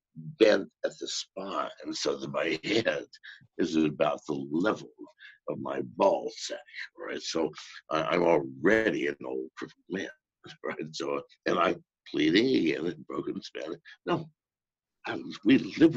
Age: 60-79